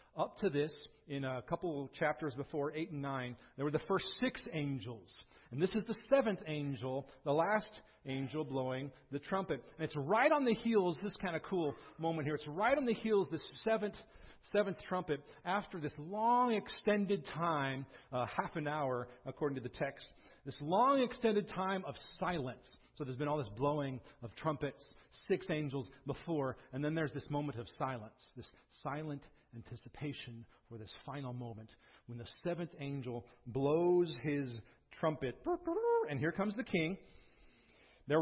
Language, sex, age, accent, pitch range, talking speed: English, male, 40-59, American, 140-200 Hz, 170 wpm